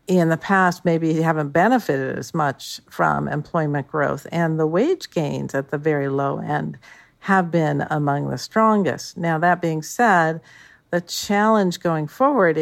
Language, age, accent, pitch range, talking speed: English, 50-69, American, 145-175 Hz, 155 wpm